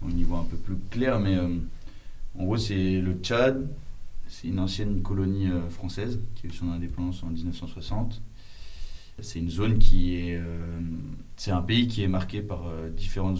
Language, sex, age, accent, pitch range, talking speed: French, male, 20-39, French, 85-100 Hz, 190 wpm